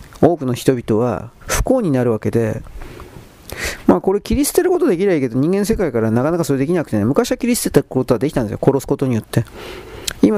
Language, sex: Japanese, male